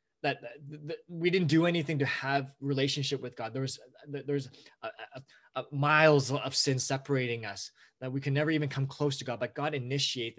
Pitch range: 125-145 Hz